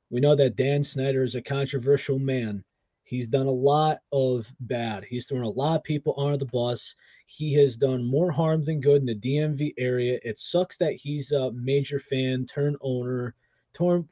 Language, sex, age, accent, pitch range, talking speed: English, male, 20-39, American, 125-155 Hz, 190 wpm